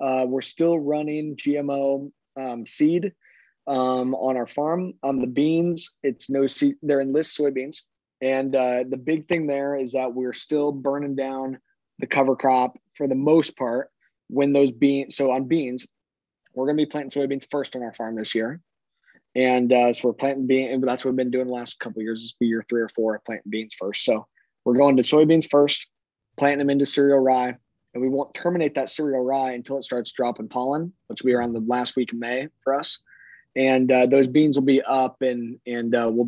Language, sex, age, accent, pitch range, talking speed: English, male, 20-39, American, 125-145 Hz, 215 wpm